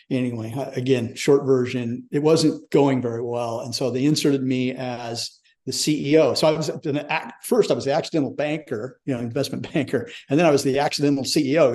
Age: 50-69